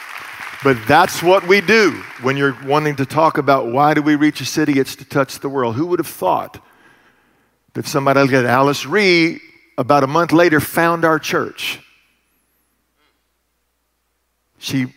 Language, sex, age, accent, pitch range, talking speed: English, male, 50-69, American, 135-175 Hz, 155 wpm